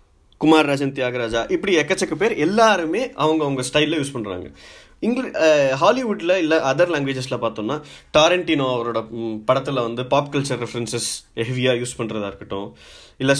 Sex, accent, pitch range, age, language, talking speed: male, native, 120-165 Hz, 20-39, Tamil, 130 wpm